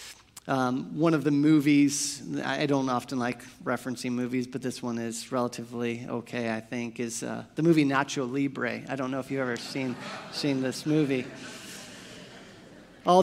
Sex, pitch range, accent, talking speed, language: male, 130-155 Hz, American, 165 wpm, English